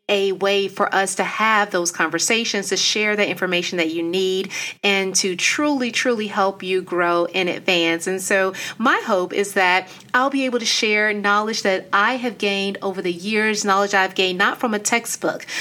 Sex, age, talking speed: female, 30-49, 190 wpm